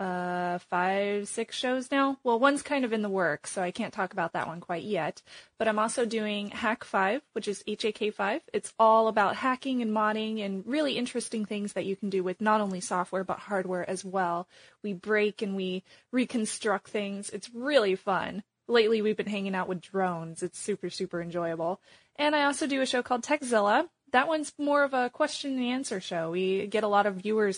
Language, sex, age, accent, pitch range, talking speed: English, female, 20-39, American, 190-235 Hz, 205 wpm